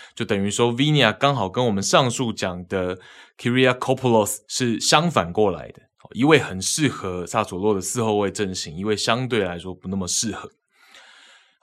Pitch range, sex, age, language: 100-130 Hz, male, 20-39, Chinese